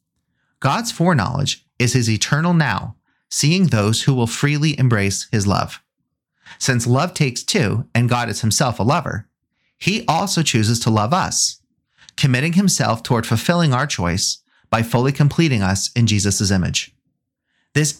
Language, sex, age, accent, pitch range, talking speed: English, male, 30-49, American, 105-150 Hz, 145 wpm